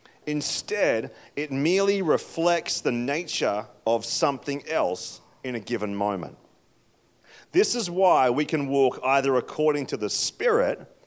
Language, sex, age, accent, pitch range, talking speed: English, male, 40-59, Australian, 135-195 Hz, 130 wpm